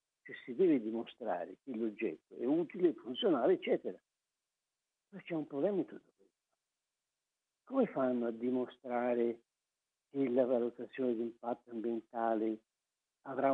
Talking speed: 125 wpm